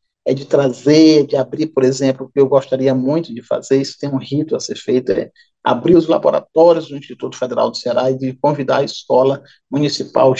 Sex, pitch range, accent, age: male, 125-150 Hz, Brazilian, 50-69